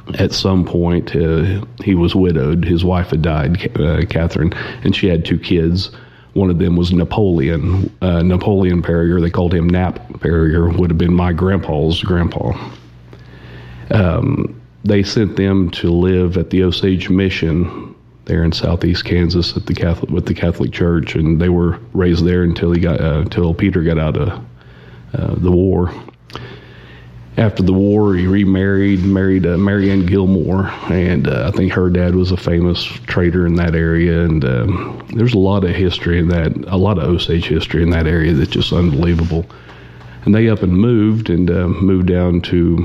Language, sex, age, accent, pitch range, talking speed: English, male, 40-59, American, 85-95 Hz, 180 wpm